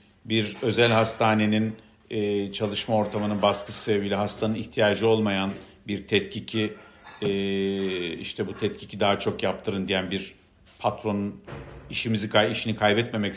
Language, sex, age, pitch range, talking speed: Turkish, male, 50-69, 100-115 Hz, 110 wpm